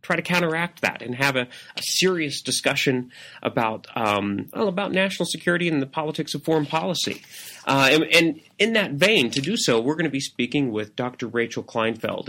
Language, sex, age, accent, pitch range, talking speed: English, male, 30-49, American, 110-140 Hz, 195 wpm